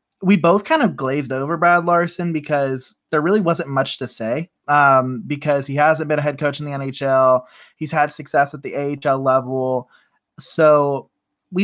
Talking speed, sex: 180 wpm, male